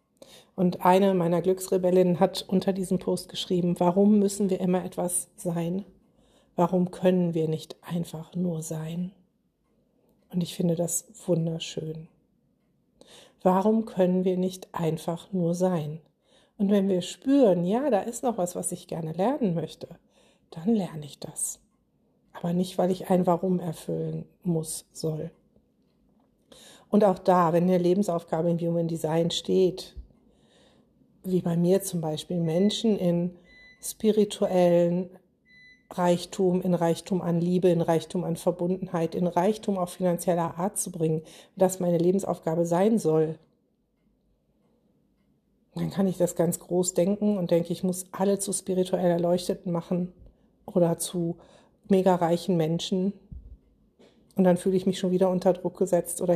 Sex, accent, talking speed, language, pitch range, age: female, German, 140 wpm, German, 170-195 Hz, 60-79